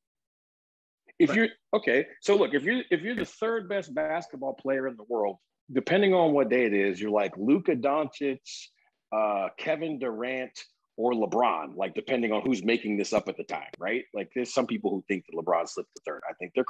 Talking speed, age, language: 205 wpm, 40-59, English